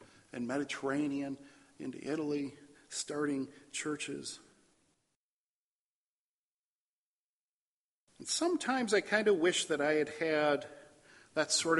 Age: 50-69